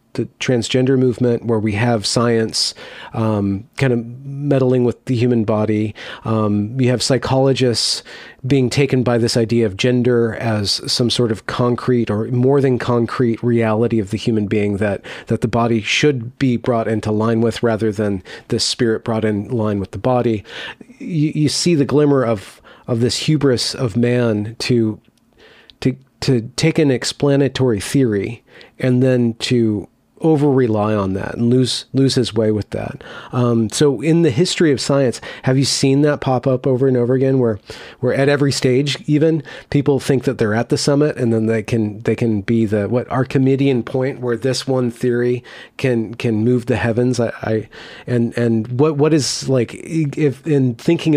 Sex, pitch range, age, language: male, 115-135 Hz, 40-59, English